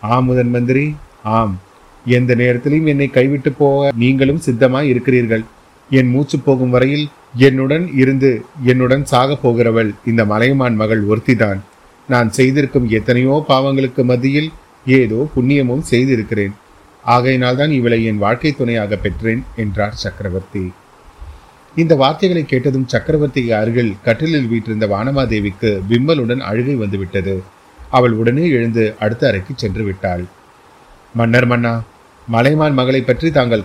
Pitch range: 110-135 Hz